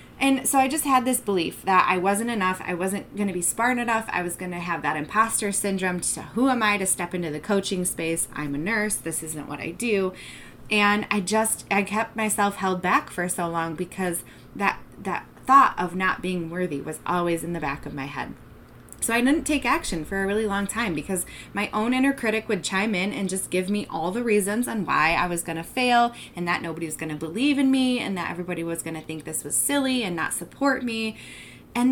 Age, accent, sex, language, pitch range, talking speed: 20-39, American, female, English, 170-220 Hz, 240 wpm